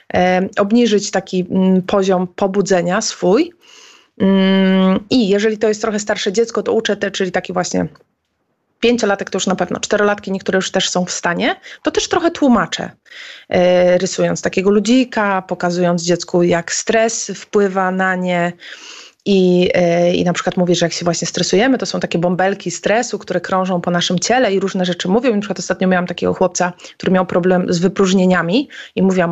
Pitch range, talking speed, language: 180-225 Hz, 170 wpm, Polish